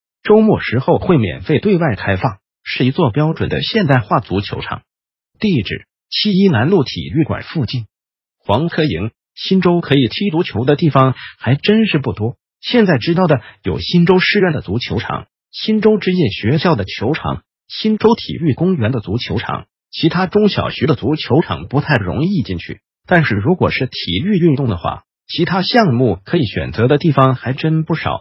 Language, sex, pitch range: Chinese, male, 115-180 Hz